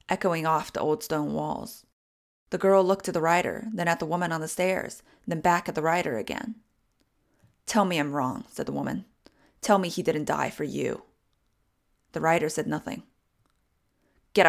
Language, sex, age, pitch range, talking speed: English, female, 20-39, 160-220 Hz, 180 wpm